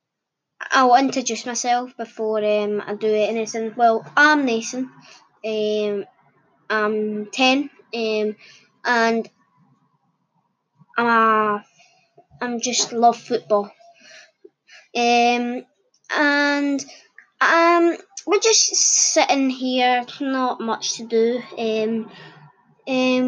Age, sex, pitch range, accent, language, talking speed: 20-39, female, 210-260 Hz, British, English, 90 wpm